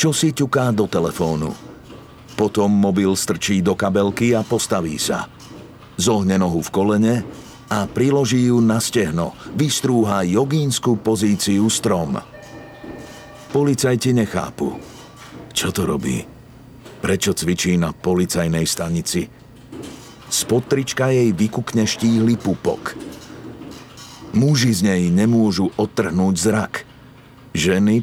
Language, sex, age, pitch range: Slovak, male, 50-69, 95-120 Hz